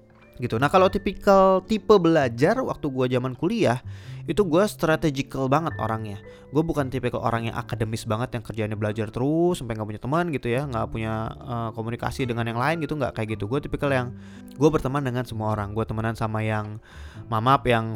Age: 20-39